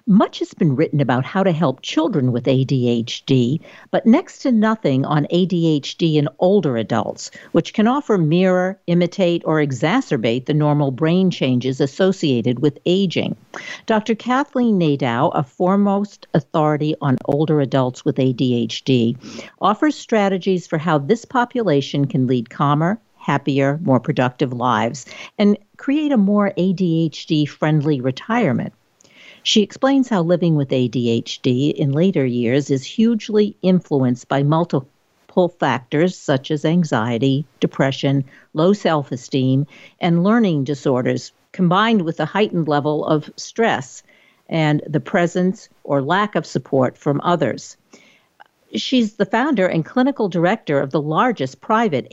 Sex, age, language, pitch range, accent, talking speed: female, 60-79, English, 140-190 Hz, American, 135 wpm